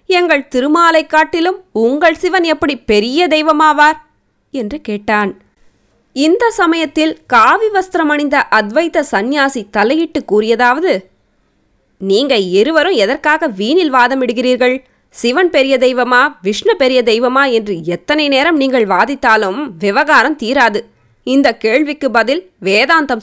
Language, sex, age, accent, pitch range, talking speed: Tamil, female, 20-39, native, 245-315 Hz, 105 wpm